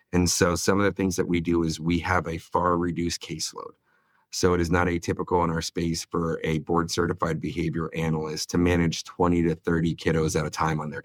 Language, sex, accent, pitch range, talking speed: English, male, American, 80-90 Hz, 225 wpm